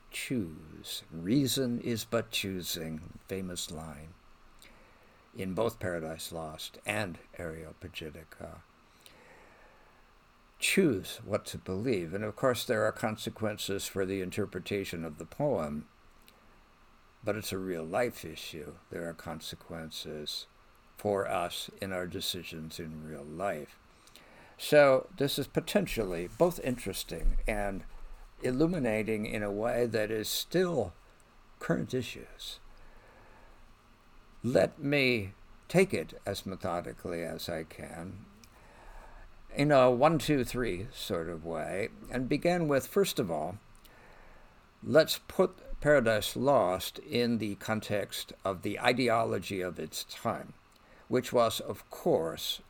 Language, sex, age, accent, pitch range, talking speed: English, male, 60-79, American, 85-120 Hz, 115 wpm